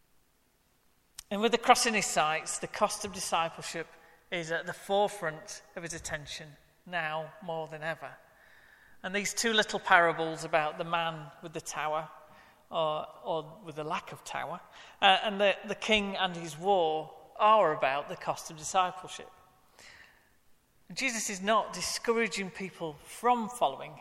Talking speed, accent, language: 155 wpm, British, English